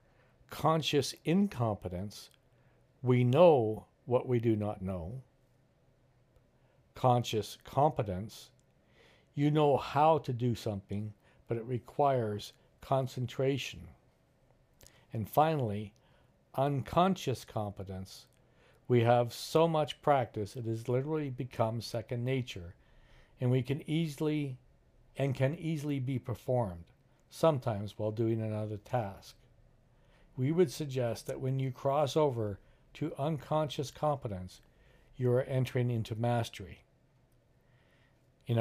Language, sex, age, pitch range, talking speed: English, male, 60-79, 115-140 Hz, 105 wpm